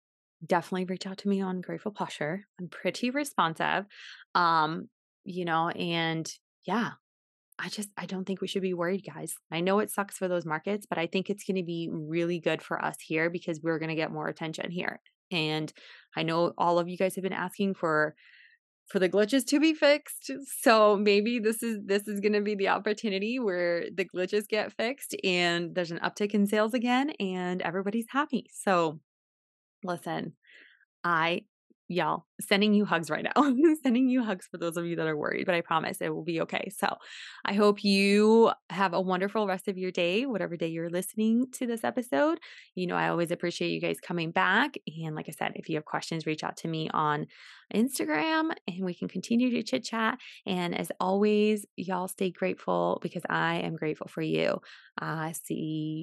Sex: female